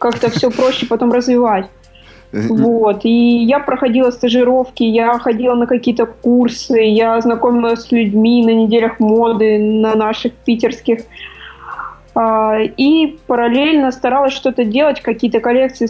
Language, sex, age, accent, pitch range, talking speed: Russian, female, 20-39, native, 225-245 Hz, 120 wpm